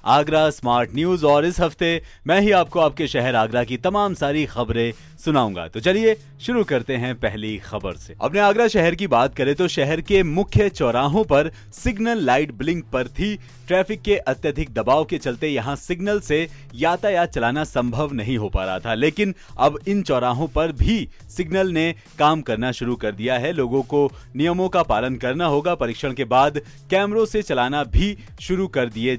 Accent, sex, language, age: native, male, Hindi, 30-49